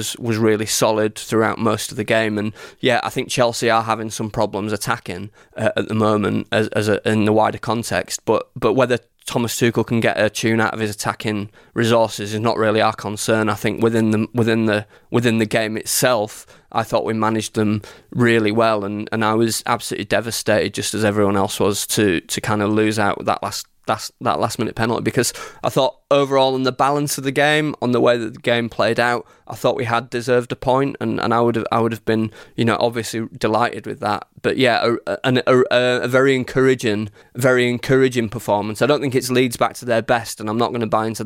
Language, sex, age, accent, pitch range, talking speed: English, male, 20-39, British, 110-120 Hz, 225 wpm